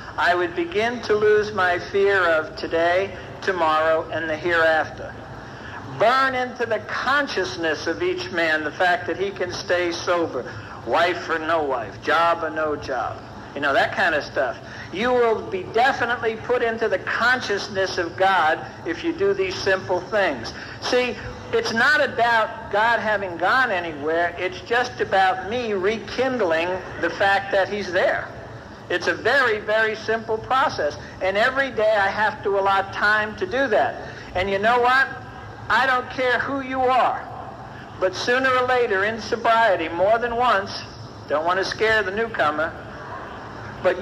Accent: American